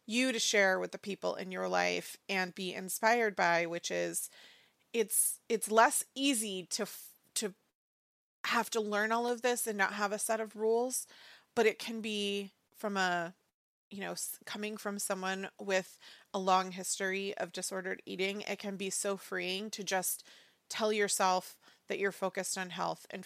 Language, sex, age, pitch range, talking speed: English, female, 30-49, 185-210 Hz, 175 wpm